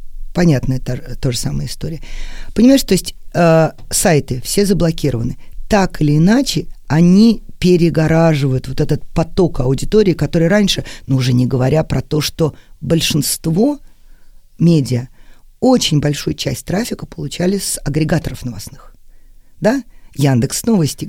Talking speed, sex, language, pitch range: 120 wpm, female, Russian, 135-190 Hz